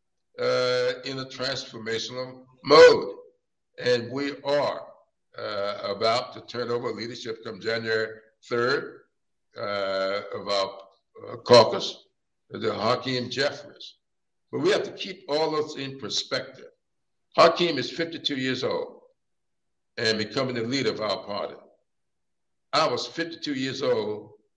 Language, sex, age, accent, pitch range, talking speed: English, male, 60-79, American, 110-165 Hz, 125 wpm